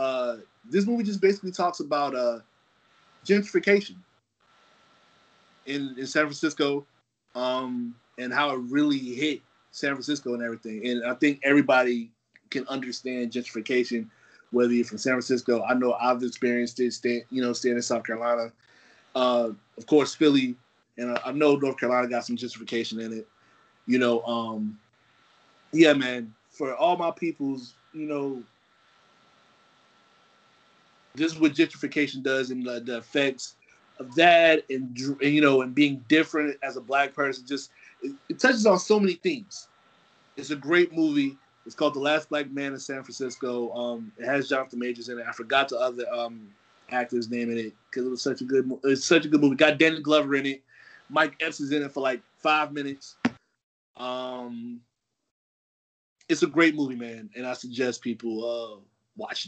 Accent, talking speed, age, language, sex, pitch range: American, 170 wpm, 30-49, English, male, 120-150 Hz